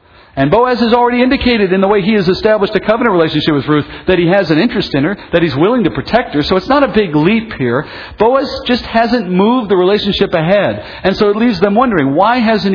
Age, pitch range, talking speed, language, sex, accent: 50-69, 150-215 Hz, 240 wpm, English, male, American